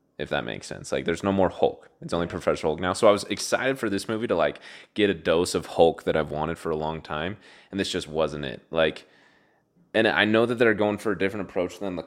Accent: American